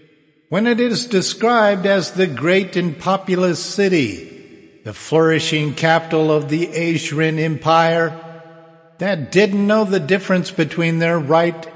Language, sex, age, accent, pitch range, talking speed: English, male, 50-69, American, 140-185 Hz, 130 wpm